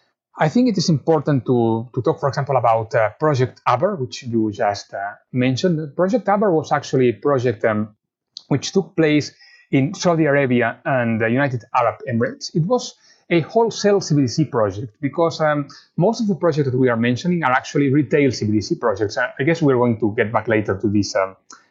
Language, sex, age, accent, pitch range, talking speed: English, male, 30-49, Spanish, 120-170 Hz, 195 wpm